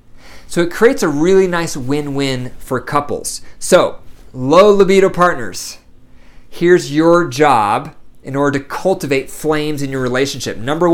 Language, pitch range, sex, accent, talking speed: English, 135-170 Hz, male, American, 135 wpm